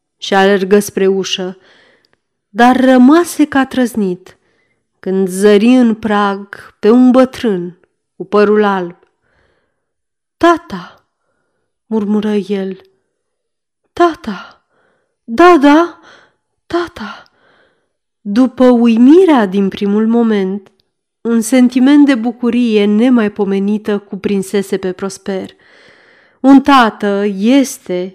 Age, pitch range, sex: 30-49, 195-255 Hz, female